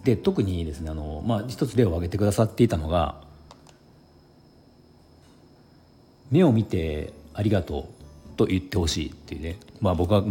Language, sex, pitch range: Japanese, male, 85-115 Hz